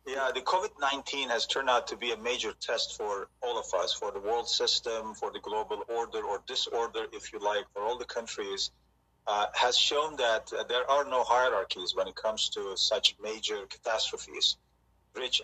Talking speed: 190 wpm